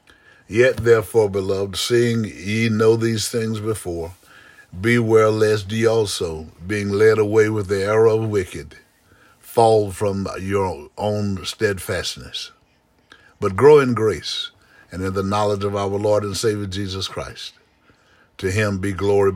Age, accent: 60-79, American